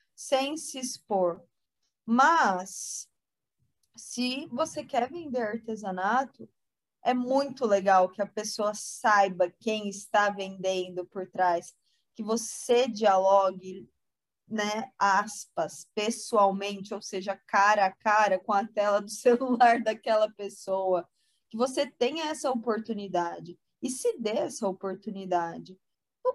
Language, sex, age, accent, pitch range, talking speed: Portuguese, female, 20-39, Brazilian, 195-265 Hz, 115 wpm